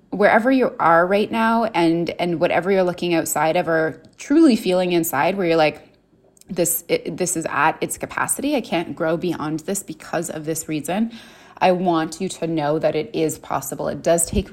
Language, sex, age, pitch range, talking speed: English, female, 20-39, 160-190 Hz, 190 wpm